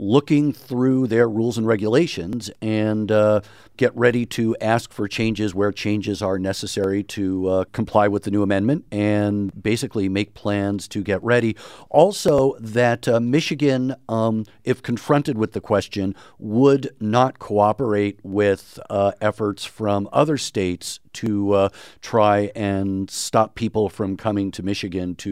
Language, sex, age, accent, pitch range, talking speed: English, male, 50-69, American, 95-110 Hz, 145 wpm